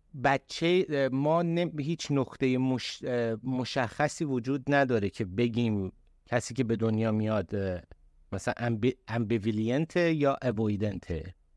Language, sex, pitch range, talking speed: Persian, male, 110-135 Hz, 100 wpm